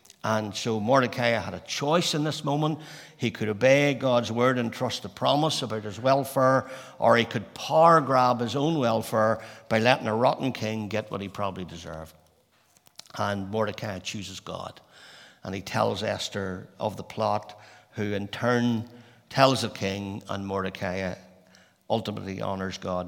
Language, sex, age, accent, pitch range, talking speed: English, male, 60-79, Irish, 105-130 Hz, 160 wpm